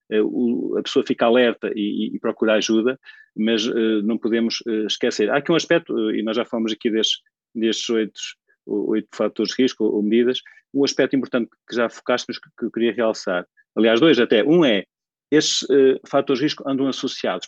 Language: Portuguese